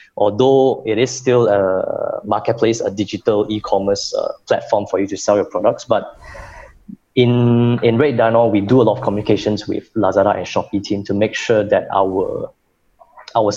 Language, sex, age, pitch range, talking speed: English, male, 20-39, 95-115 Hz, 170 wpm